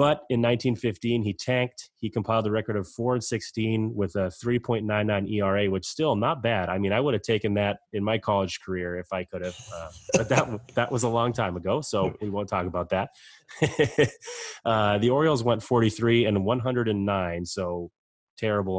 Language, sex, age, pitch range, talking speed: English, male, 30-49, 95-120 Hz, 190 wpm